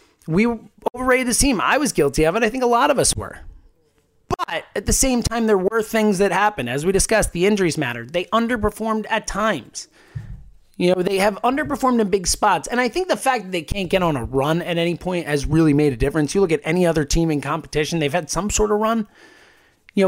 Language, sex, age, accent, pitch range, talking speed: English, male, 30-49, American, 170-245 Hz, 235 wpm